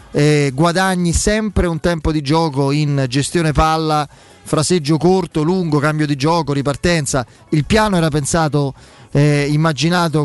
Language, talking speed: Italian, 135 wpm